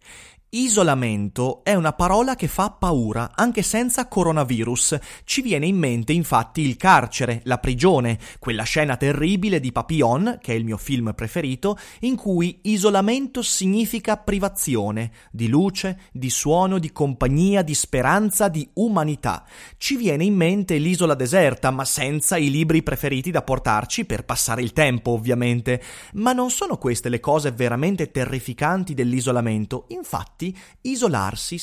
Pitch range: 125-200 Hz